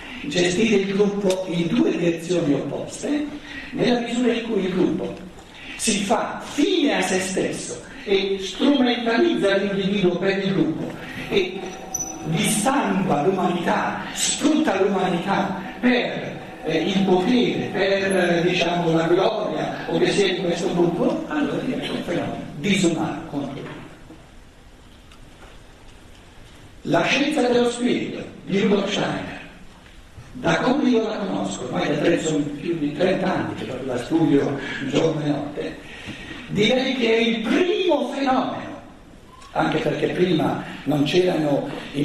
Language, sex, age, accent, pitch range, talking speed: Italian, male, 60-79, native, 160-240 Hz, 130 wpm